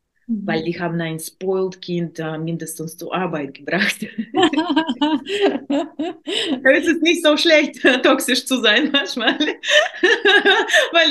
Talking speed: 115 wpm